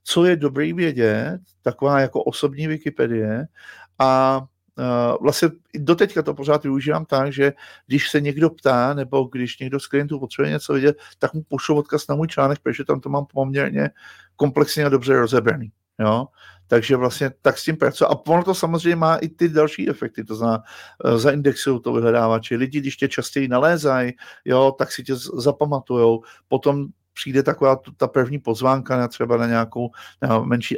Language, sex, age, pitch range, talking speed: Czech, male, 50-69, 125-150 Hz, 175 wpm